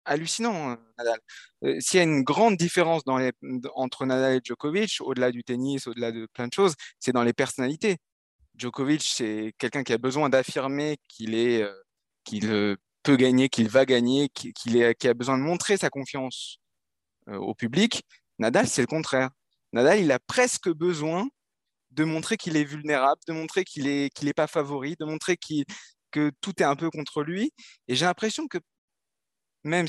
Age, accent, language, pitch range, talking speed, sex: 20-39, French, French, 130-180 Hz, 185 wpm, male